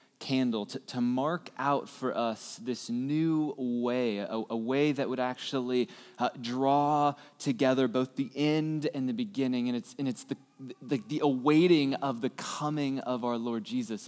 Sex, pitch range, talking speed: male, 120-155 Hz, 170 wpm